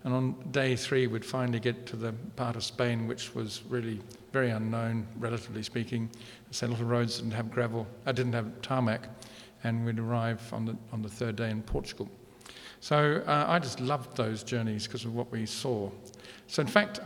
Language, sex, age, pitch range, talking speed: English, male, 50-69, 115-130 Hz, 200 wpm